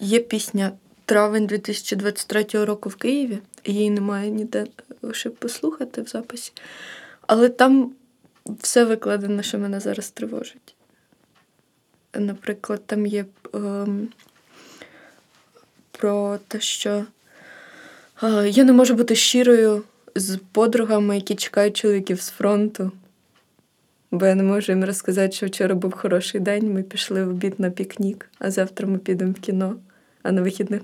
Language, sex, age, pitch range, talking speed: Ukrainian, female, 20-39, 195-230 Hz, 130 wpm